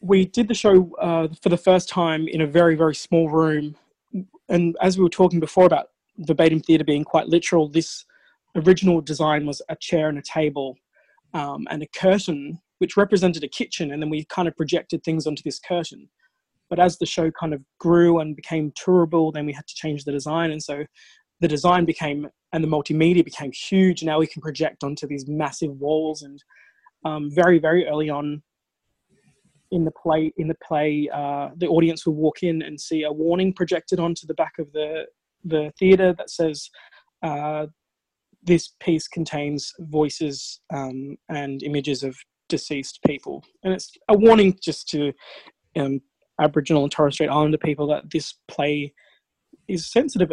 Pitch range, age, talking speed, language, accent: 150-180 Hz, 20-39, 180 wpm, English, Australian